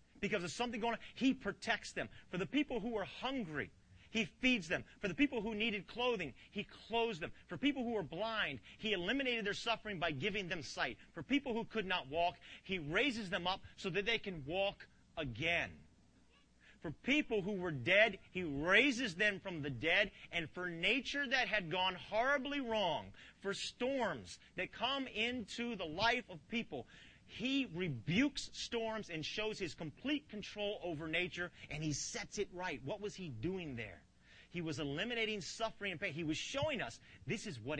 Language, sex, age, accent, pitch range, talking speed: English, male, 40-59, American, 150-225 Hz, 185 wpm